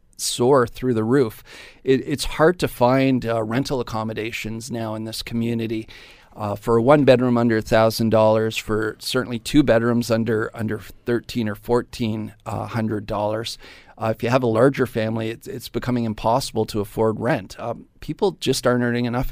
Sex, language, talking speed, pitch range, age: male, English, 170 wpm, 110-130 Hz, 40-59